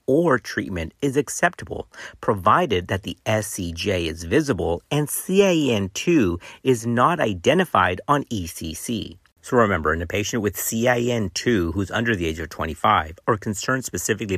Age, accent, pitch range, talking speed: 50-69, American, 90-130 Hz, 140 wpm